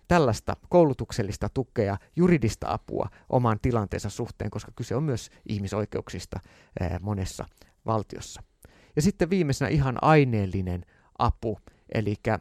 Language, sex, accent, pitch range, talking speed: Finnish, male, native, 105-135 Hz, 105 wpm